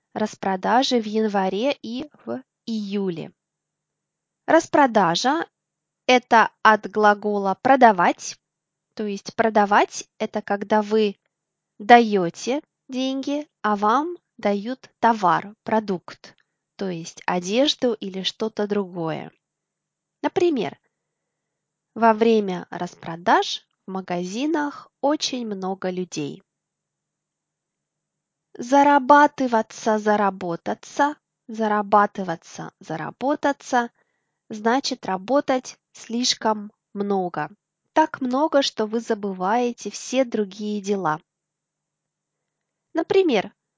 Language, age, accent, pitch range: Russian, 20-39, native, 195-260 Hz